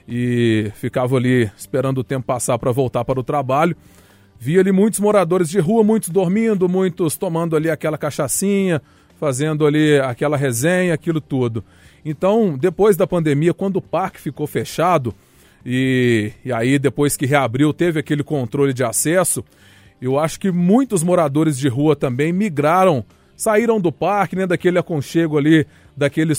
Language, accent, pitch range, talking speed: Portuguese, Brazilian, 135-180 Hz, 155 wpm